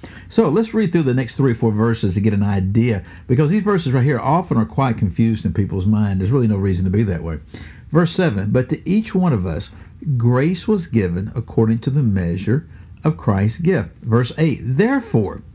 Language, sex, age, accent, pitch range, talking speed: English, male, 60-79, American, 105-140 Hz, 210 wpm